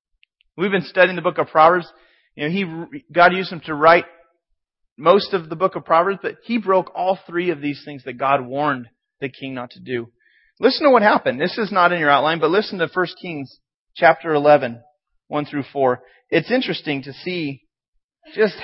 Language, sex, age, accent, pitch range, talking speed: English, male, 30-49, American, 150-195 Hz, 200 wpm